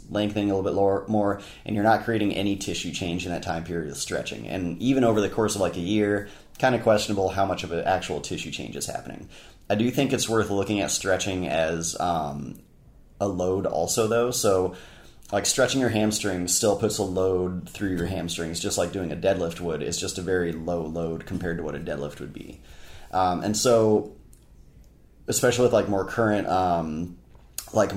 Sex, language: male, English